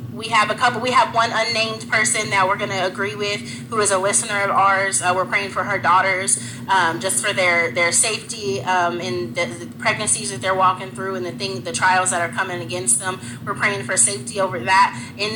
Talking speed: 230 wpm